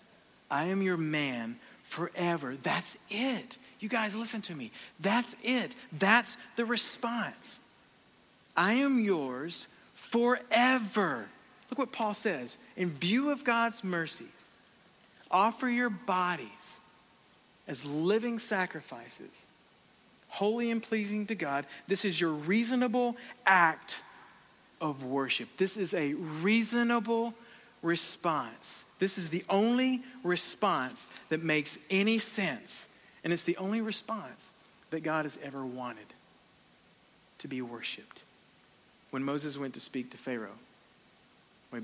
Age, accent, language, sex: 50-69, American, English, male